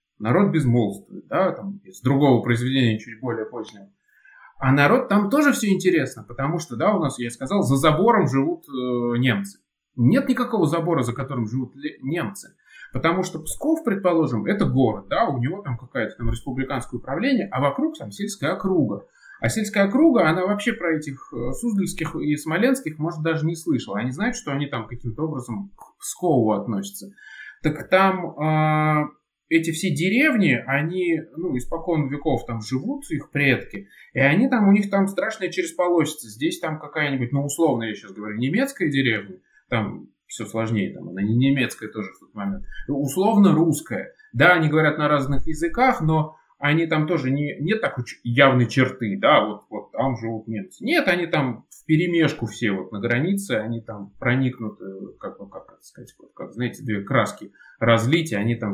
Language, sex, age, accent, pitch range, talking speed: Russian, male, 20-39, native, 120-170 Hz, 170 wpm